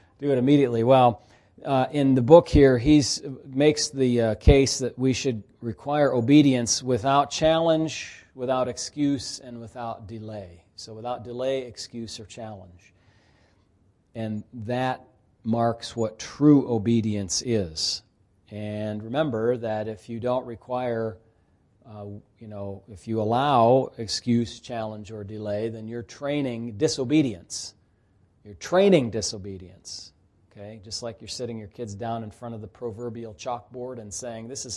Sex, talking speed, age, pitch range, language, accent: male, 140 wpm, 40-59, 105-130 Hz, English, American